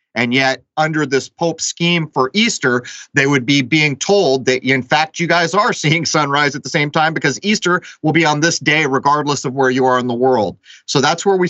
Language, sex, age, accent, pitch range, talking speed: English, male, 30-49, American, 125-155 Hz, 230 wpm